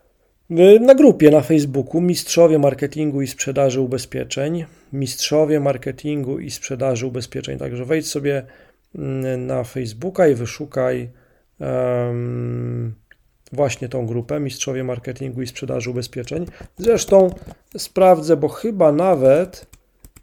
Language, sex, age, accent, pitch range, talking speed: Polish, male, 40-59, native, 130-165 Hz, 100 wpm